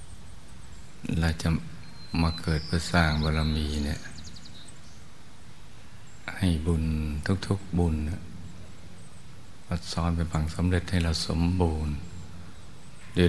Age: 60-79